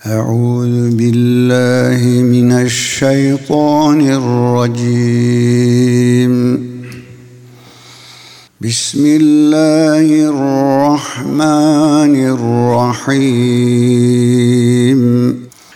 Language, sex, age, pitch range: Turkish, male, 50-69, 125-165 Hz